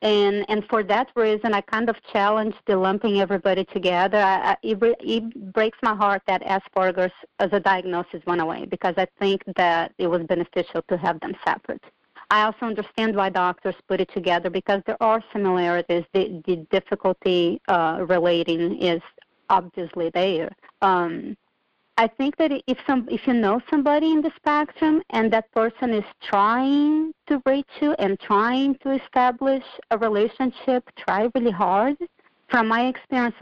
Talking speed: 160 wpm